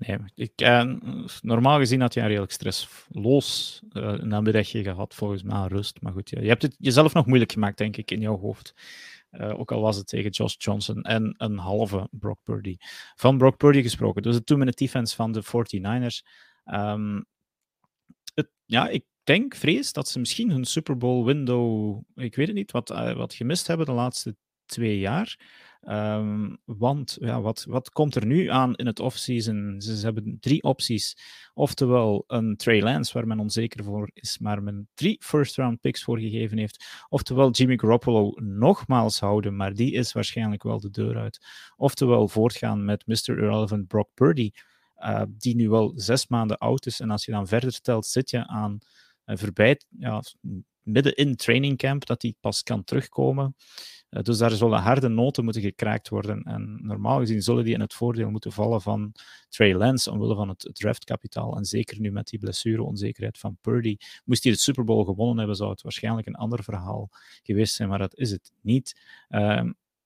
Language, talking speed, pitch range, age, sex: Dutch, 190 wpm, 105-125 Hz, 30-49, male